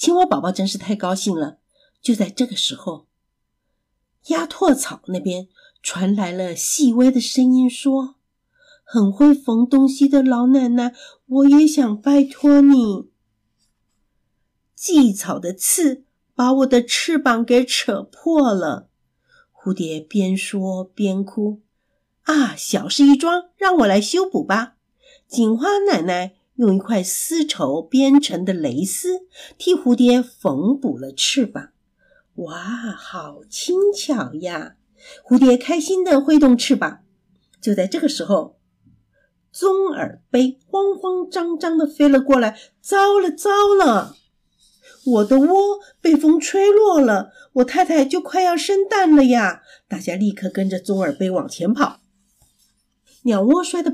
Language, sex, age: Chinese, female, 50-69